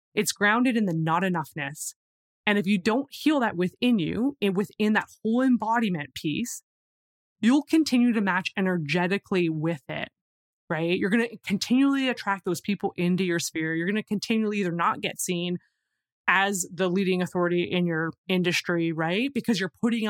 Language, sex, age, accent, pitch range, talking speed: English, female, 20-39, American, 170-215 Hz, 170 wpm